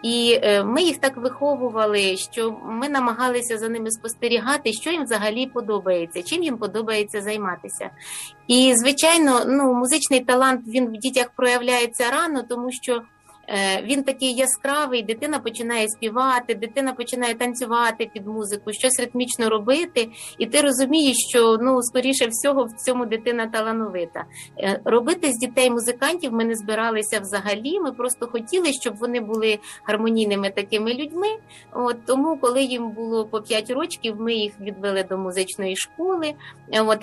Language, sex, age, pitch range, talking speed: Ukrainian, female, 30-49, 215-260 Hz, 140 wpm